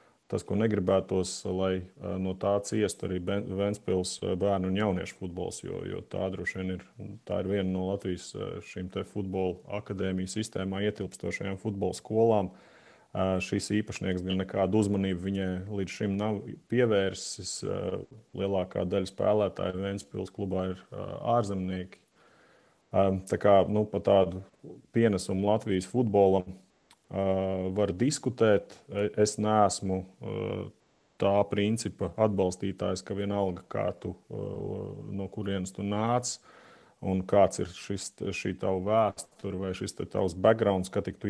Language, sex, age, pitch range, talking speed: English, male, 30-49, 95-105 Hz, 120 wpm